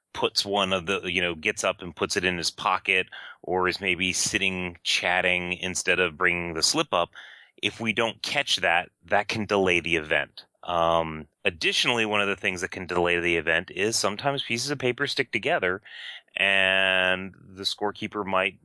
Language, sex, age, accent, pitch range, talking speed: English, male, 30-49, American, 90-105 Hz, 185 wpm